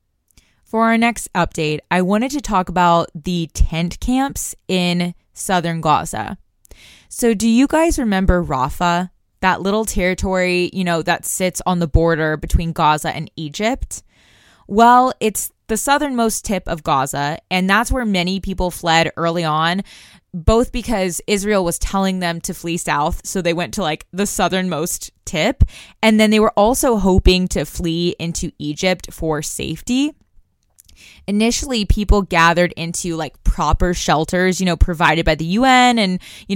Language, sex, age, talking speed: English, female, 20-39, 155 wpm